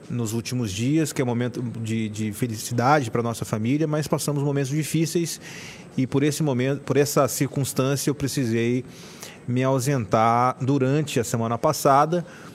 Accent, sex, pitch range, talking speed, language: Brazilian, male, 120-145 Hz, 155 wpm, Portuguese